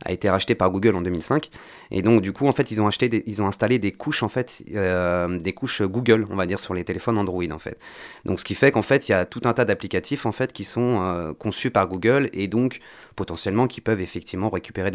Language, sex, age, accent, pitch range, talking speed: French, male, 30-49, French, 95-120 Hz, 260 wpm